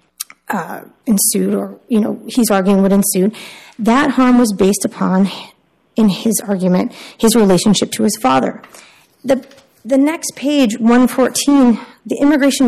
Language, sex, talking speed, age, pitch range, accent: English, female, 135 wpm, 30-49, 195-255 Hz, American